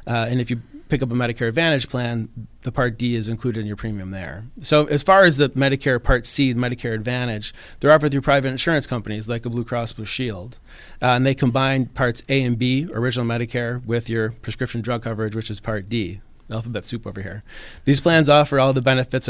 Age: 30-49